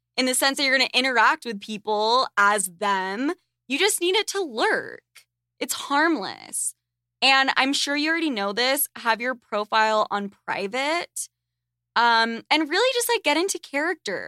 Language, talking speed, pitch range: English, 170 wpm, 205-280 Hz